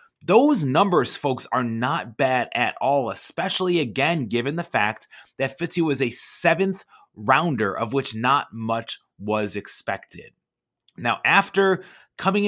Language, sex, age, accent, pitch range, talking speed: English, male, 30-49, American, 115-165 Hz, 135 wpm